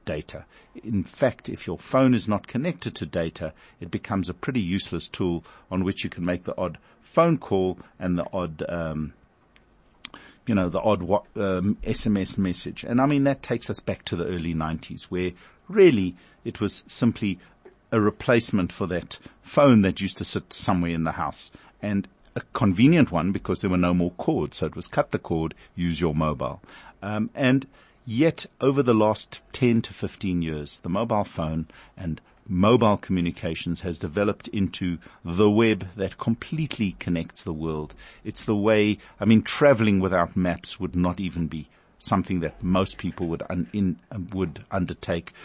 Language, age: English, 60-79